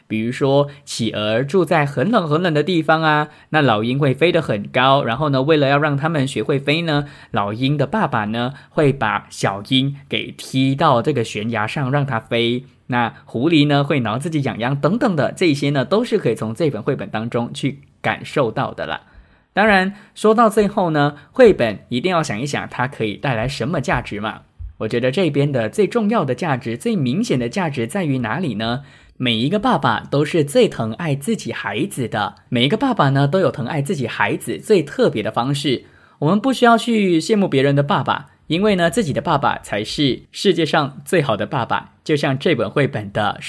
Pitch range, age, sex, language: 120-160 Hz, 20-39, male, English